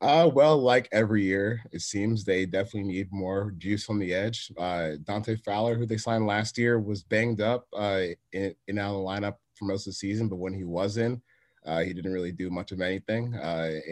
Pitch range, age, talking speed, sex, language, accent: 95-110 Hz, 30-49, 220 wpm, male, English, American